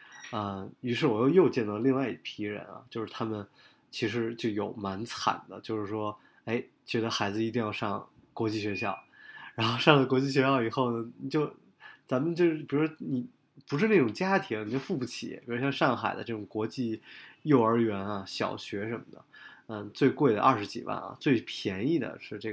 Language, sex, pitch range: Chinese, male, 105-130 Hz